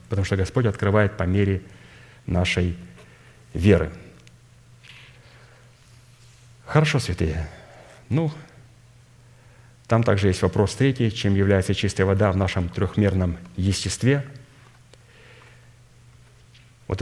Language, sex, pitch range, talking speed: Russian, male, 95-120 Hz, 90 wpm